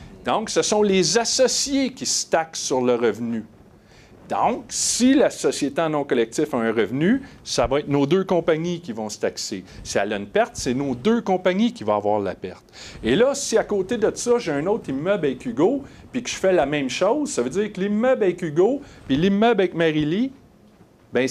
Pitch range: 135-215 Hz